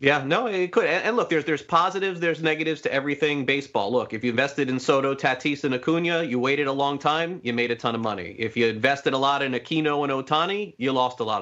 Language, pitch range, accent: English, 125-160 Hz, American